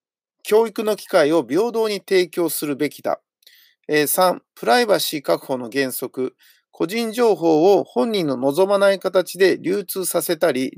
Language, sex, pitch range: Japanese, male, 155-210 Hz